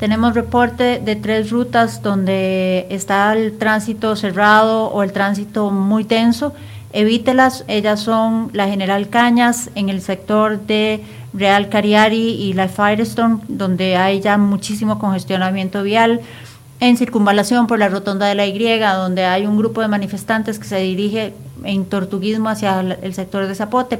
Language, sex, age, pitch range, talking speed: Spanish, female, 40-59, 195-225 Hz, 150 wpm